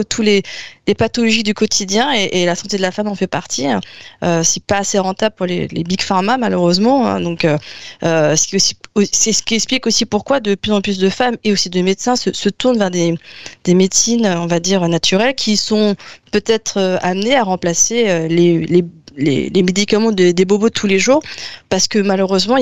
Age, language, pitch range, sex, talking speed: 20-39, French, 180-220 Hz, female, 215 wpm